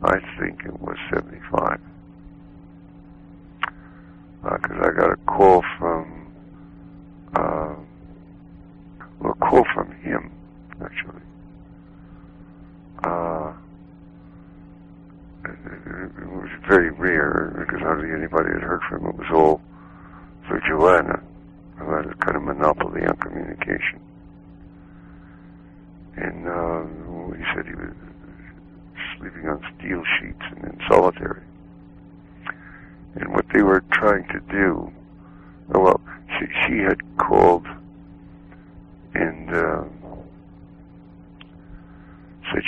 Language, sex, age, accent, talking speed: English, male, 60-79, American, 105 wpm